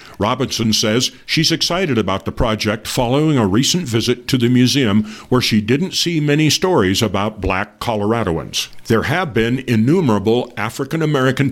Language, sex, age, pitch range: English, male, 50-69, 110-145 Hz